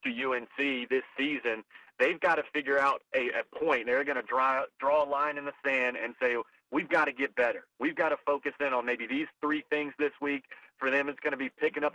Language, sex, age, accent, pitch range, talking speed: English, male, 40-59, American, 130-150 Hz, 245 wpm